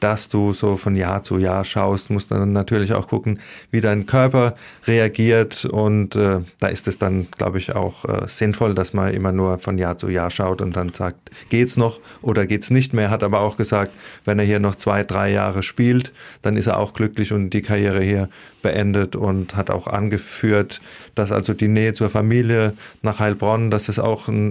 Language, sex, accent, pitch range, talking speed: German, male, German, 100-110 Hz, 205 wpm